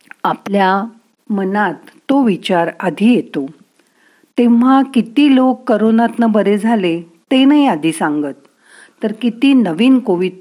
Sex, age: female, 50-69